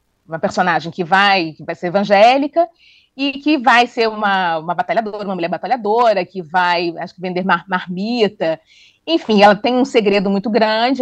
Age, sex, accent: 30-49, female, Brazilian